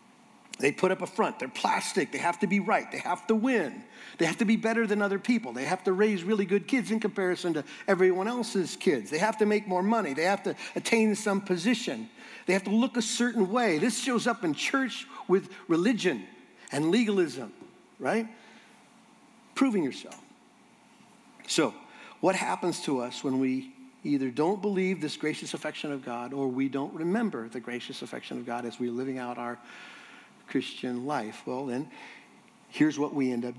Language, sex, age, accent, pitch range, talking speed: English, male, 50-69, American, 150-230 Hz, 190 wpm